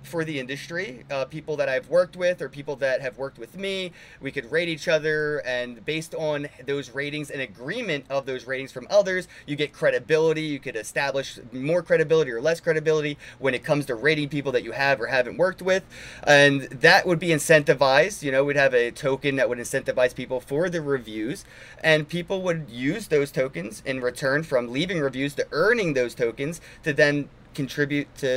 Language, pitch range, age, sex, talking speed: English, 135-165 Hz, 30-49, male, 195 wpm